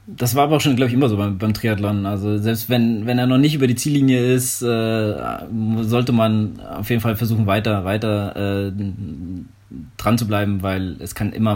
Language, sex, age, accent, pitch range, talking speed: German, male, 20-39, German, 100-120 Hz, 210 wpm